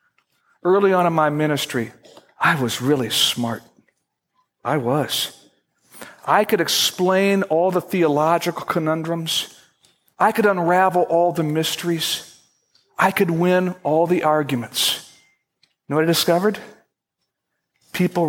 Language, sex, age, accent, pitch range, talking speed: English, male, 60-79, American, 145-185 Hz, 120 wpm